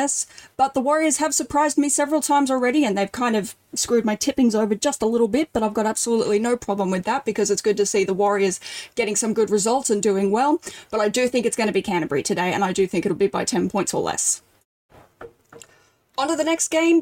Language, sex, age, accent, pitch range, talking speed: English, female, 10-29, Australian, 200-255 Hz, 245 wpm